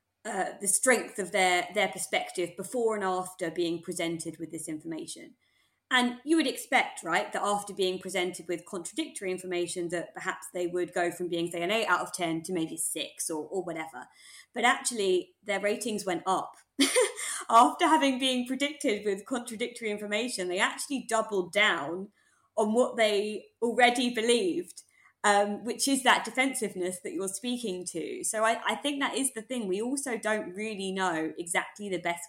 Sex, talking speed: female, 175 wpm